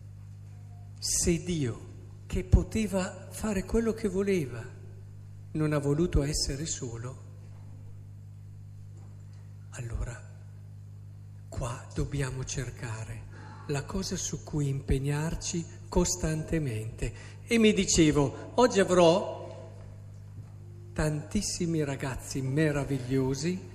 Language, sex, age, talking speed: Italian, male, 50-69, 80 wpm